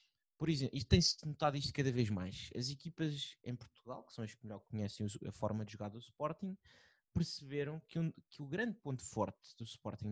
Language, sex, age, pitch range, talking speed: Portuguese, male, 20-39, 115-150 Hz, 200 wpm